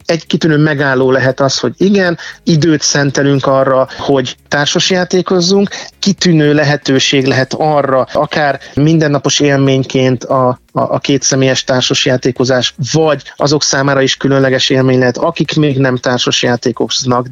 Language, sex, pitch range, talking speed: Hungarian, male, 130-160 Hz, 120 wpm